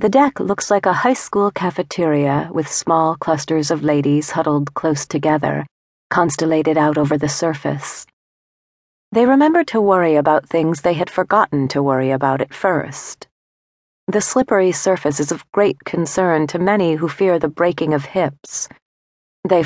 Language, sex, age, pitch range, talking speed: English, female, 40-59, 140-180 Hz, 155 wpm